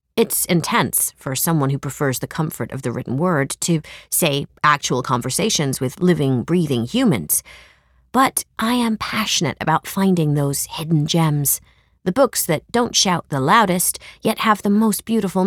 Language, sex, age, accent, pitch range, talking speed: English, female, 30-49, American, 145-205 Hz, 160 wpm